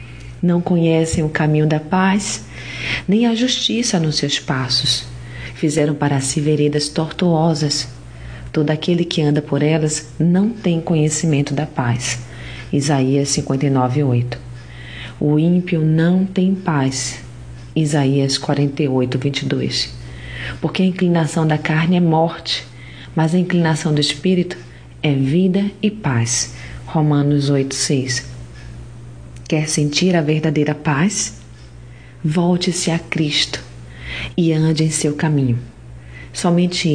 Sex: female